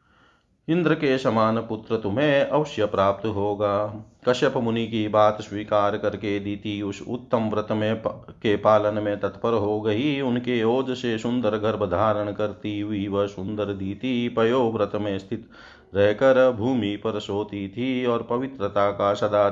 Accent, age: native, 40-59